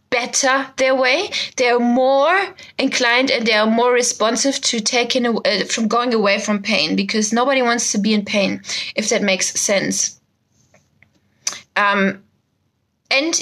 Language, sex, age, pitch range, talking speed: English, female, 20-39, 205-265 Hz, 150 wpm